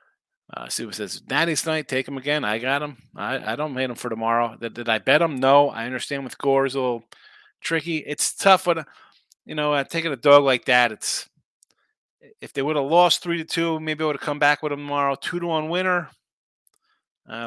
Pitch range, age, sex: 125-165 Hz, 30-49, male